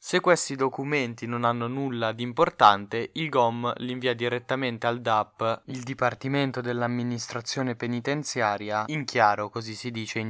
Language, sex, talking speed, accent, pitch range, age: Italian, male, 145 wpm, native, 110-135 Hz, 20-39